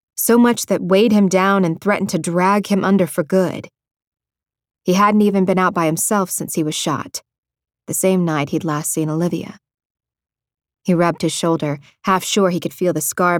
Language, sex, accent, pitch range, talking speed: English, female, American, 160-190 Hz, 195 wpm